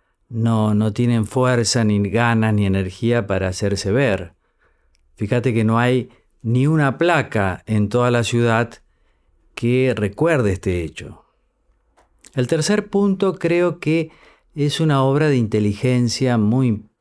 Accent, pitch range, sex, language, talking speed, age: Argentinian, 105-145 Hz, male, Spanish, 130 wpm, 40-59